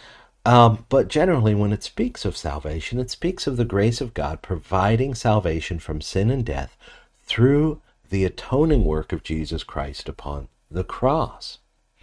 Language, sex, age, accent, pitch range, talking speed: English, male, 50-69, American, 80-115 Hz, 155 wpm